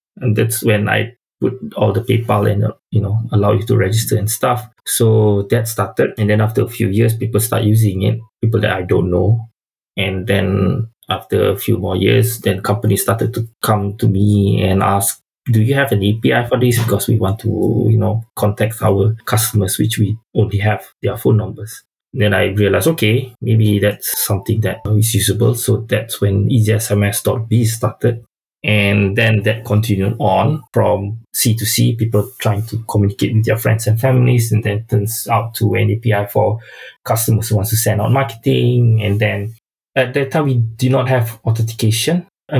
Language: English